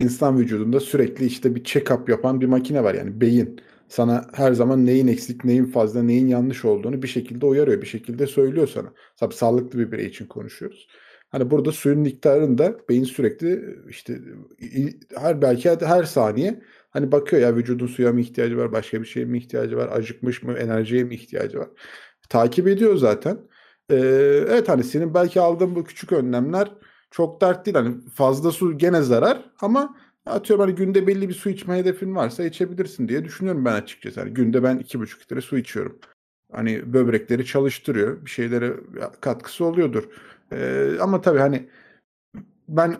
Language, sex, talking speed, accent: Turkish, male, 165 wpm, native